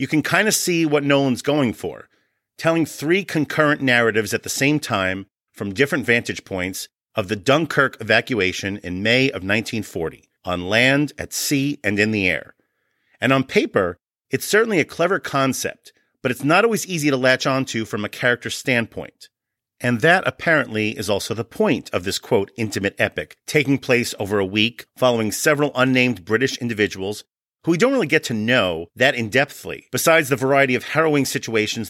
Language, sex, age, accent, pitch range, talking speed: English, male, 40-59, American, 110-145 Hz, 175 wpm